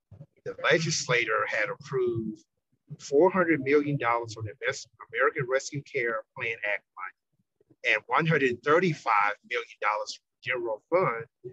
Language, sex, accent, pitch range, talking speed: English, male, American, 135-180 Hz, 100 wpm